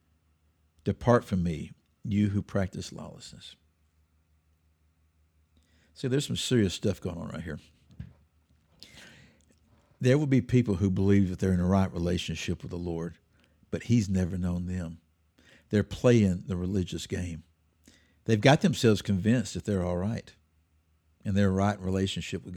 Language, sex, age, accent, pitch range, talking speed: English, male, 60-79, American, 80-135 Hz, 145 wpm